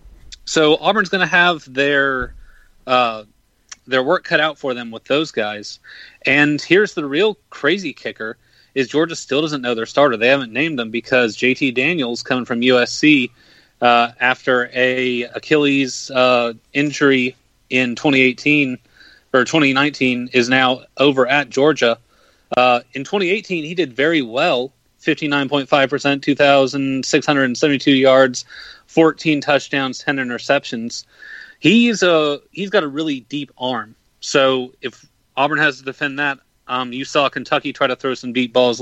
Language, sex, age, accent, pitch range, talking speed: English, male, 30-49, American, 125-150 Hz, 145 wpm